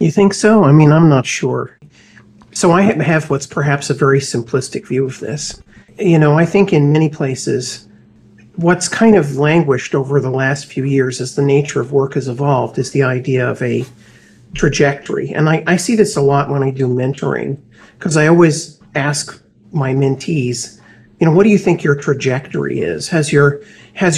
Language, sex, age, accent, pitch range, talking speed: English, male, 50-69, American, 135-170 Hz, 190 wpm